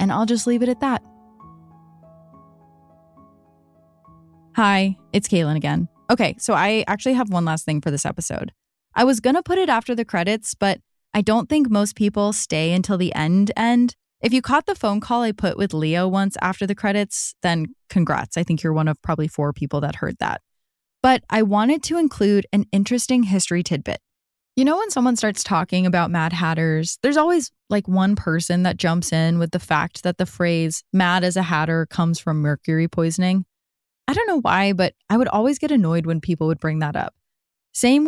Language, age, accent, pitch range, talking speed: English, 10-29, American, 165-230 Hz, 200 wpm